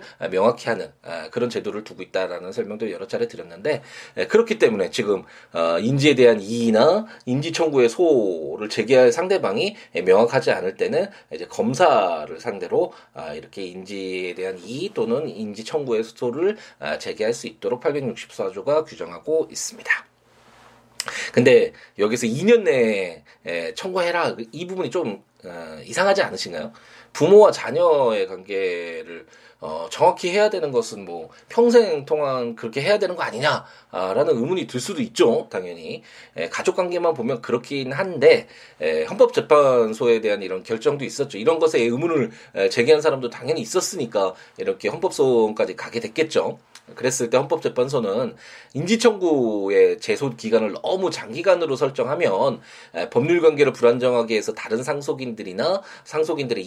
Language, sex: Korean, male